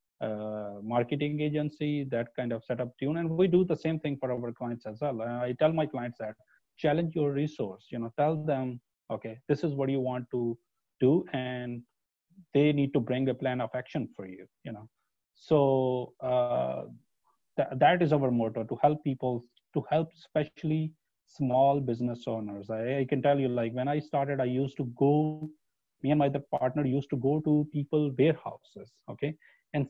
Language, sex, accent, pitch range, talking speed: English, male, Indian, 120-150 Hz, 185 wpm